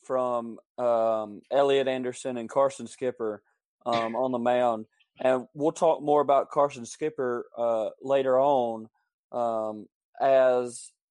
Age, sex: 30-49, male